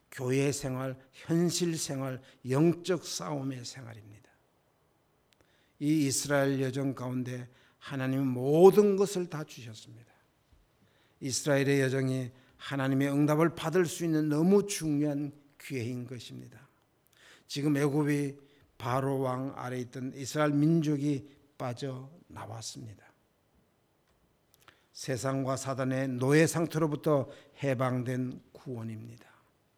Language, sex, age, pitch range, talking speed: English, male, 60-79, 125-145 Hz, 85 wpm